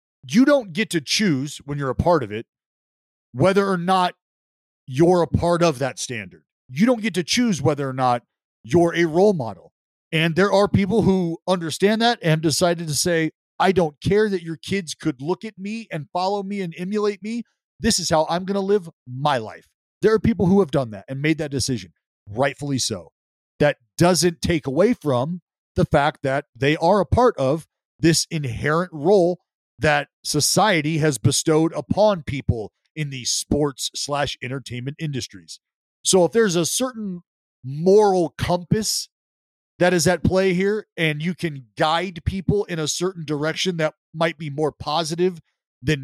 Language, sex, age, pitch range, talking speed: English, male, 40-59, 145-190 Hz, 175 wpm